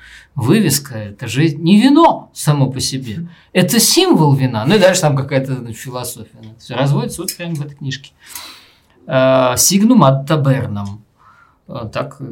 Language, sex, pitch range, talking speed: Russian, male, 125-150 Hz, 145 wpm